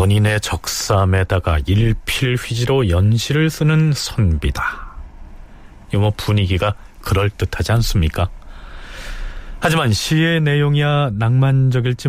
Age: 40-59